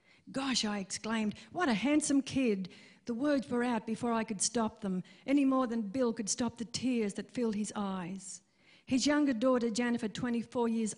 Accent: Australian